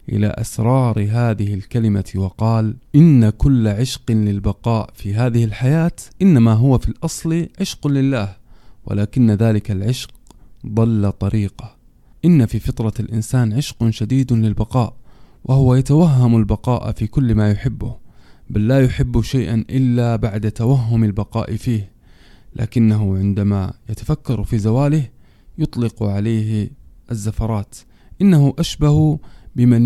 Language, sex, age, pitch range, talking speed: Arabic, male, 20-39, 110-130 Hz, 115 wpm